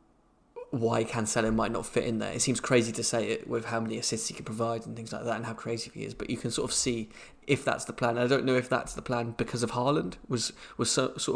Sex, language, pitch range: male, English, 115-120 Hz